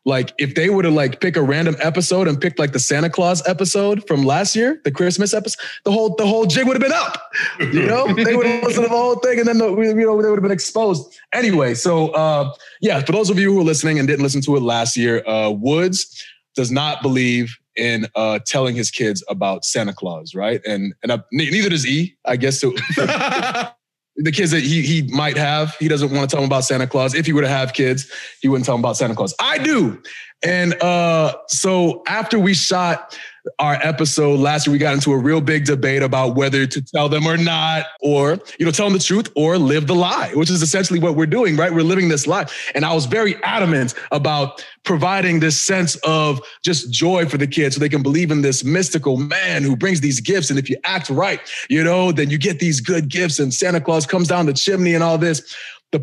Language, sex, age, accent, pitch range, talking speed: English, male, 20-39, American, 140-185 Hz, 235 wpm